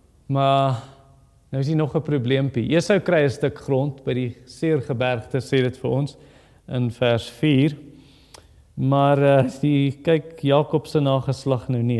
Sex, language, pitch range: male, English, 140-210 Hz